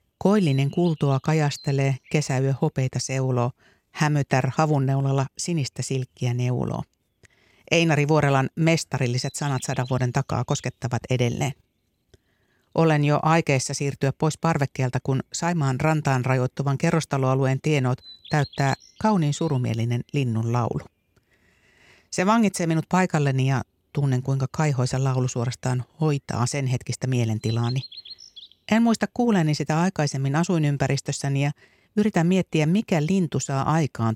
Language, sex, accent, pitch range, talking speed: Finnish, female, native, 125-155 Hz, 110 wpm